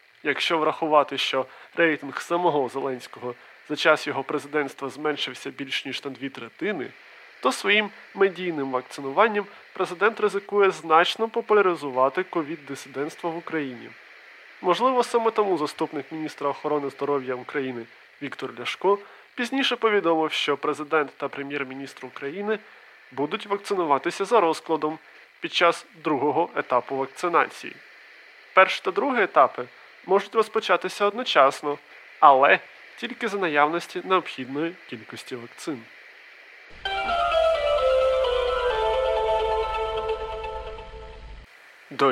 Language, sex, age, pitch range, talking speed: Ukrainian, male, 20-39, 140-215 Hz, 95 wpm